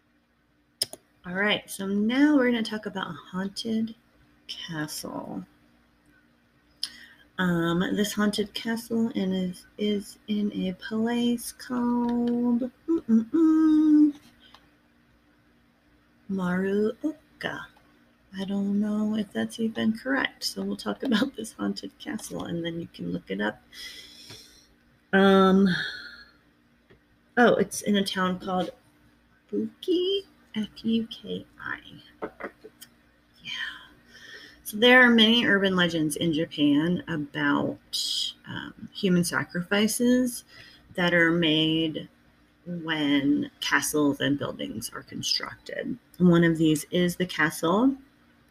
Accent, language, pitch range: American, English, 150-225 Hz